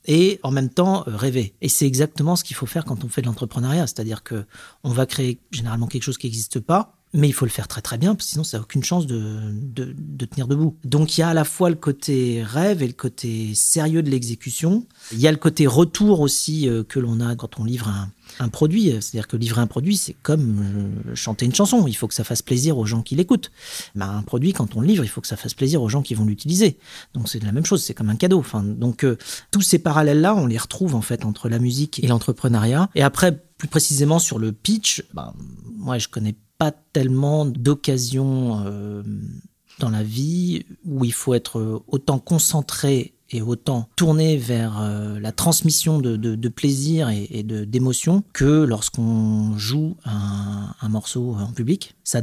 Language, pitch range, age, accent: French, 115-155 Hz, 40-59, French